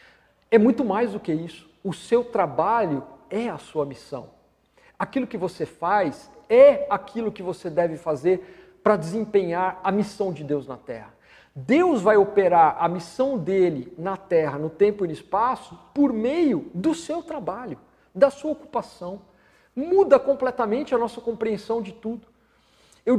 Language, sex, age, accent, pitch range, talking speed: Portuguese, male, 50-69, Brazilian, 195-255 Hz, 155 wpm